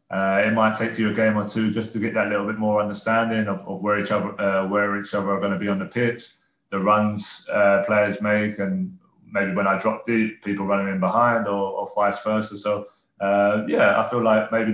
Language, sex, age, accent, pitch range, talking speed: English, male, 20-39, British, 100-110 Hz, 240 wpm